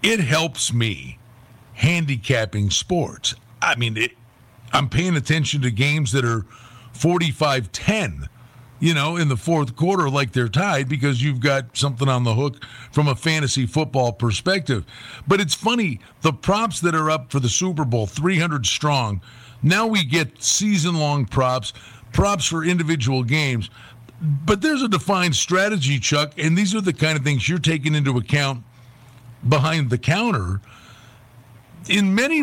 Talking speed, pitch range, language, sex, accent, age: 150 wpm, 125-180 Hz, English, male, American, 50-69